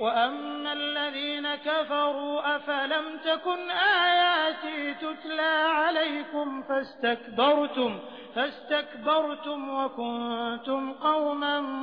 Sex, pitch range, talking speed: male, 245-295 Hz, 60 wpm